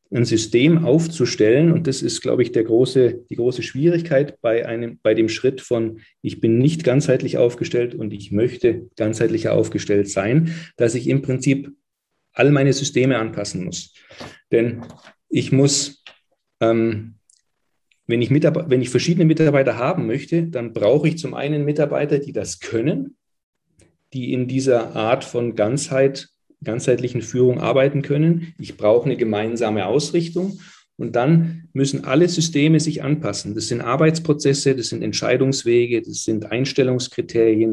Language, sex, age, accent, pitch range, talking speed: German, male, 40-59, German, 115-145 Hz, 145 wpm